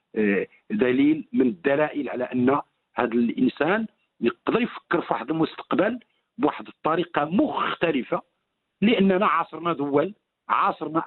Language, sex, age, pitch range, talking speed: Arabic, male, 50-69, 155-230 Hz, 100 wpm